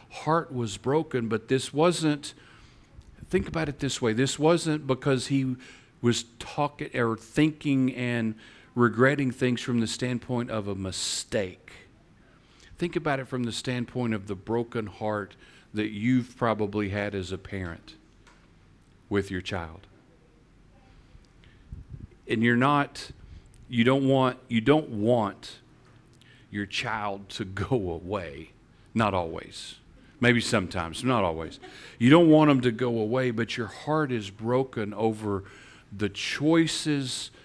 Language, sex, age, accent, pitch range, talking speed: English, male, 50-69, American, 105-130 Hz, 135 wpm